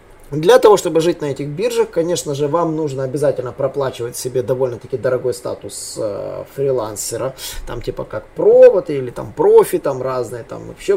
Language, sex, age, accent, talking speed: Russian, male, 20-39, native, 165 wpm